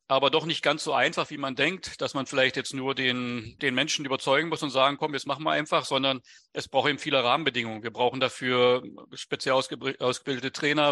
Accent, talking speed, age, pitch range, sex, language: German, 215 wpm, 40-59, 125-145 Hz, male, German